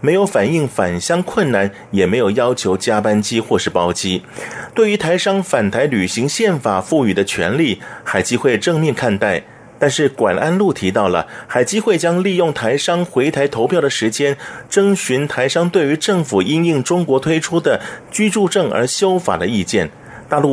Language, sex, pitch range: Chinese, male, 130-180 Hz